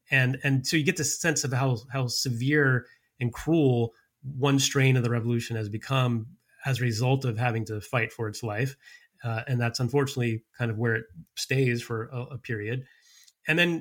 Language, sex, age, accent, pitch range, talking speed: English, male, 30-49, American, 120-140 Hz, 195 wpm